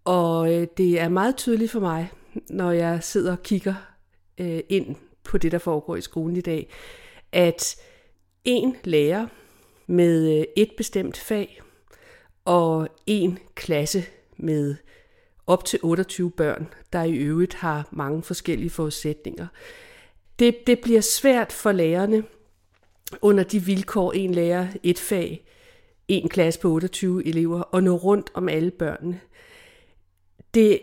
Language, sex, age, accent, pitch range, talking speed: Danish, female, 50-69, native, 175-230 Hz, 130 wpm